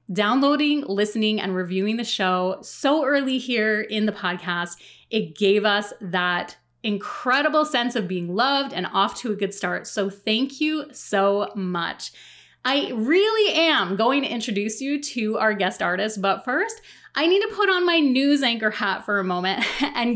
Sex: female